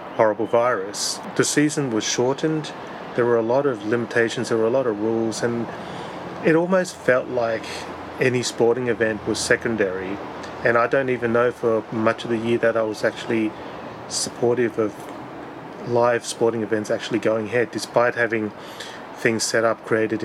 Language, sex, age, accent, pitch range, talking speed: English, male, 30-49, Australian, 110-125 Hz, 165 wpm